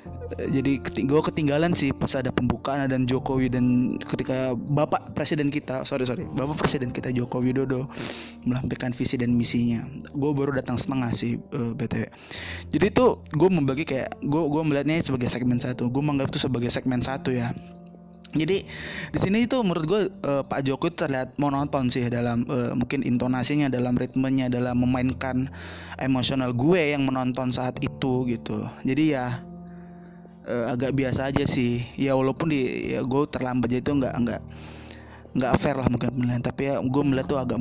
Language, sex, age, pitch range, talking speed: Indonesian, male, 20-39, 120-140 Hz, 165 wpm